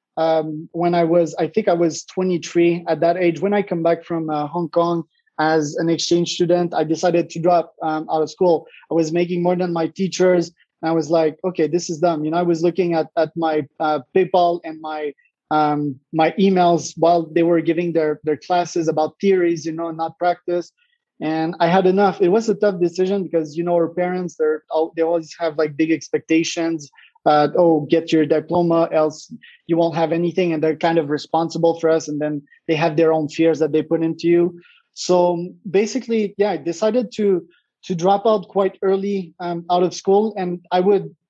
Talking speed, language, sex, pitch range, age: 210 wpm, English, male, 160-180 Hz, 20-39